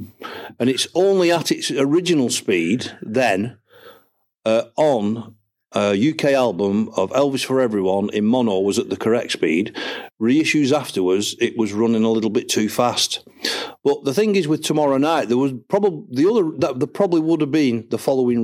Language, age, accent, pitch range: Danish, 50-69, British, 115-150 Hz